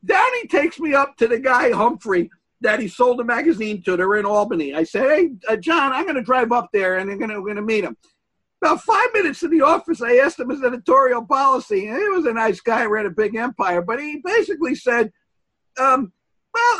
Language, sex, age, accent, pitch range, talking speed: English, male, 50-69, American, 170-275 Hz, 225 wpm